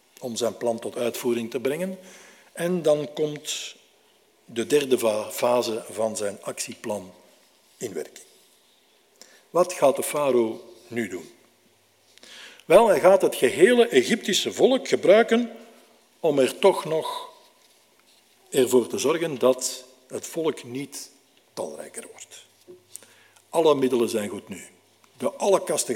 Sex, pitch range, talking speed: male, 125-185 Hz, 125 wpm